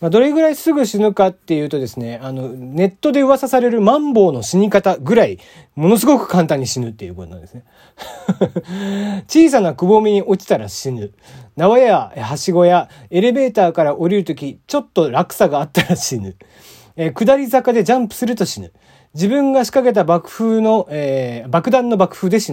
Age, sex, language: 40-59, male, Japanese